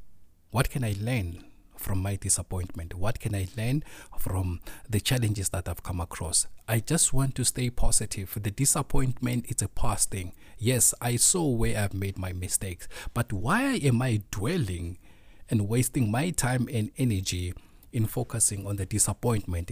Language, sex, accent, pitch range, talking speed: English, male, South African, 95-125 Hz, 165 wpm